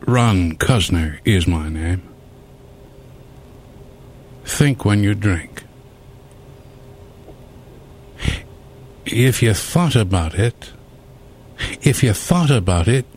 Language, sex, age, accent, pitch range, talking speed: English, male, 60-79, American, 105-130 Hz, 85 wpm